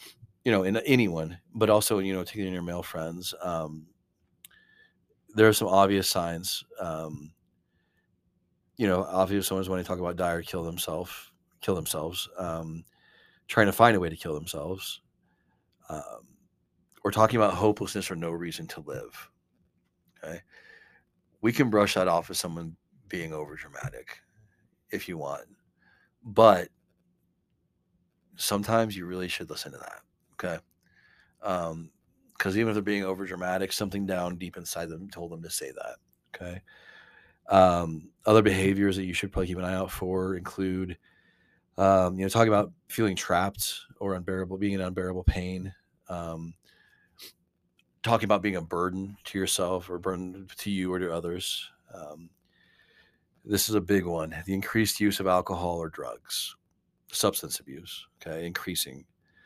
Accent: American